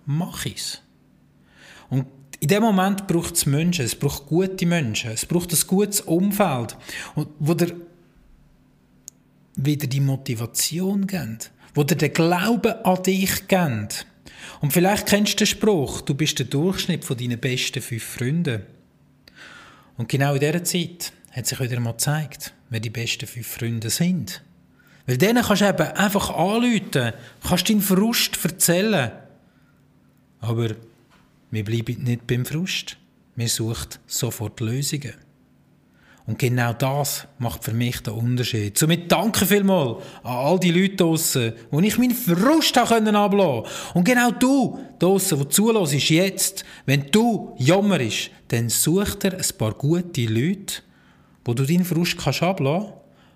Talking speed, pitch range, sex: 145 wpm, 125-190 Hz, male